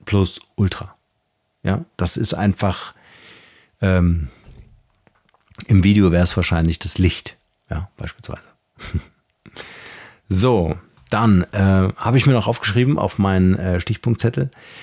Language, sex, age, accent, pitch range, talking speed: German, male, 50-69, German, 95-120 Hz, 115 wpm